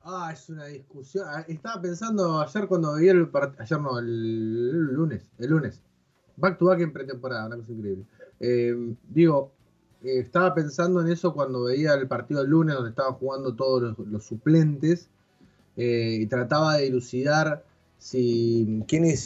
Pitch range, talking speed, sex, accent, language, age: 120-155 Hz, 160 wpm, male, Argentinian, Spanish, 20-39